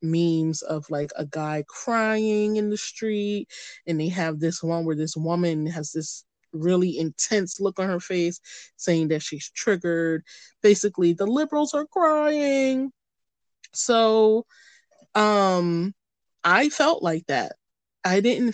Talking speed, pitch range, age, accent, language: 135 wpm, 160-225 Hz, 20-39, American, English